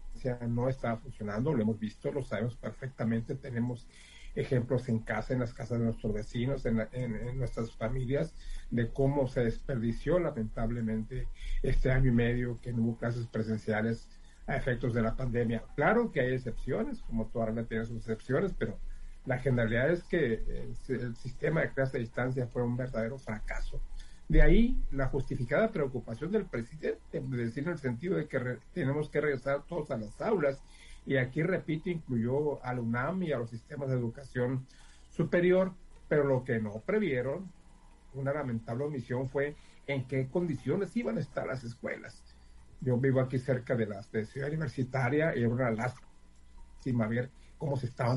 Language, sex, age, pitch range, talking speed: Spanish, male, 50-69, 115-140 Hz, 170 wpm